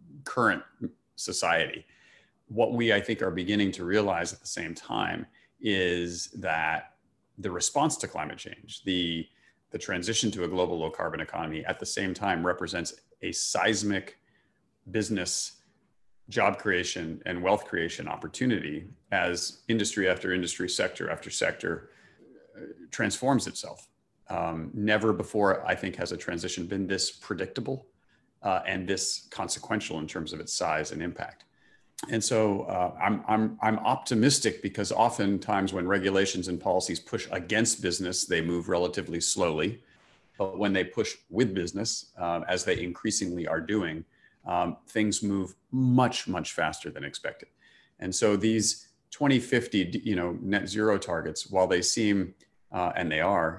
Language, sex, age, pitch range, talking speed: English, male, 40-59, 90-110 Hz, 145 wpm